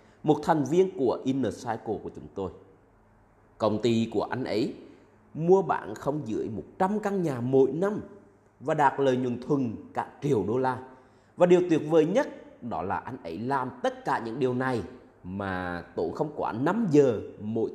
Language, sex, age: Vietnamese, male, 30-49